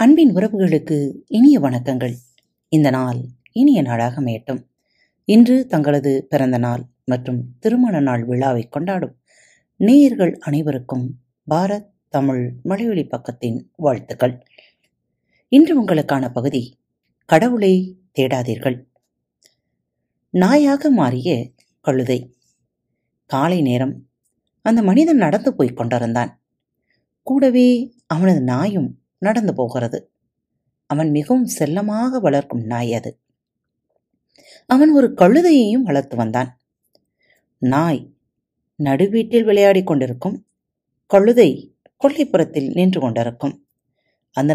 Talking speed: 85 wpm